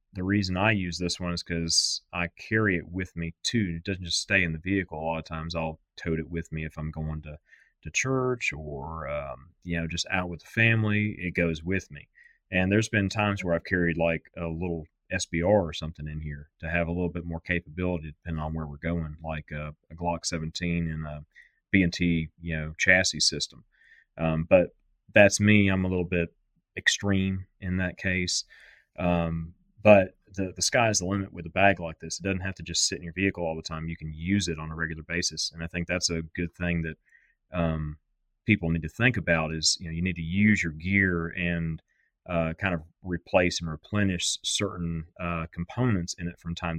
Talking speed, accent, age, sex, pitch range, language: 220 wpm, American, 30-49, male, 80-90 Hz, English